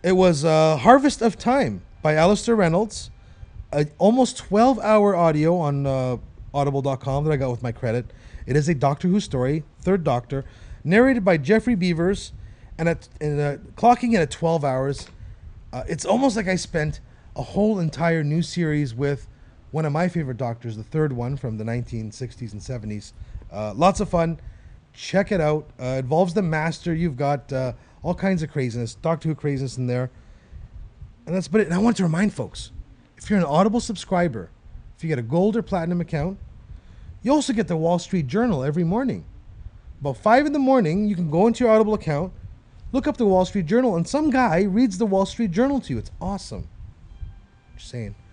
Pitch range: 125-200 Hz